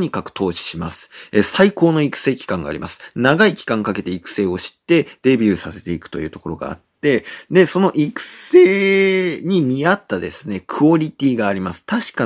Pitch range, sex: 100-165 Hz, male